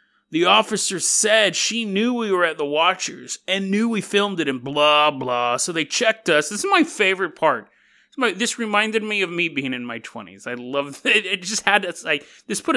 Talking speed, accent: 220 wpm, American